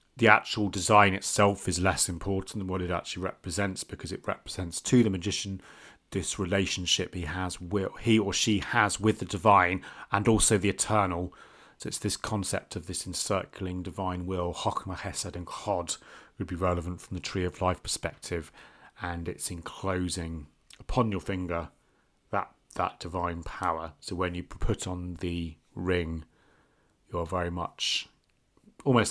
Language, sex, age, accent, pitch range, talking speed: English, male, 30-49, British, 85-100 Hz, 160 wpm